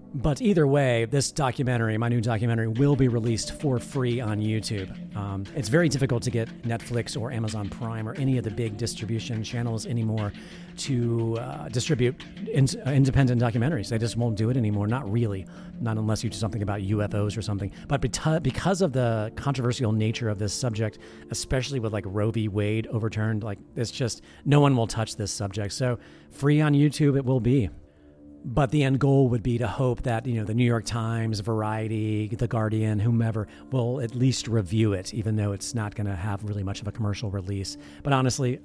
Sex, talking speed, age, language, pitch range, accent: male, 195 wpm, 40-59, English, 110-135 Hz, American